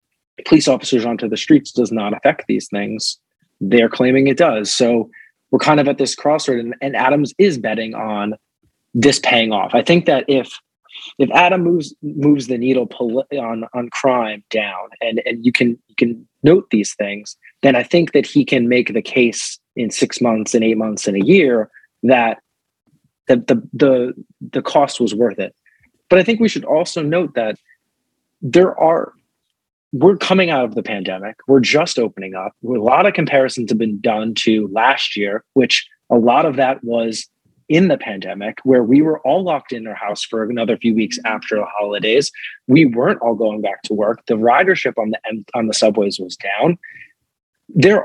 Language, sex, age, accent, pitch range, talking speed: English, male, 20-39, American, 110-145 Hz, 190 wpm